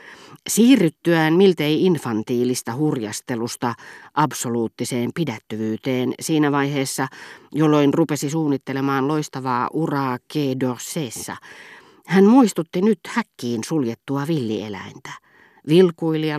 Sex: female